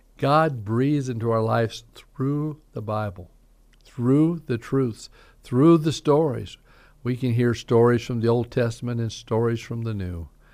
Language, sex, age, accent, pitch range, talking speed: English, male, 50-69, American, 100-125 Hz, 155 wpm